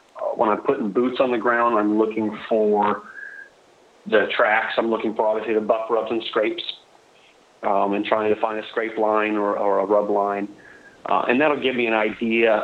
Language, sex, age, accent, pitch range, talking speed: English, male, 30-49, American, 105-110 Hz, 205 wpm